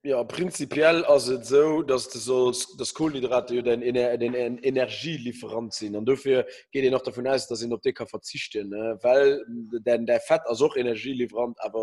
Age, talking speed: 20-39, 185 wpm